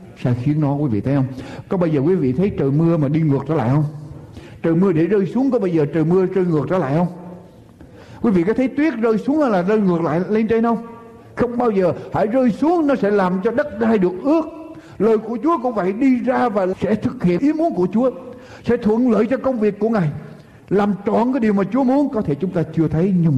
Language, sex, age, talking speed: Vietnamese, male, 60-79, 260 wpm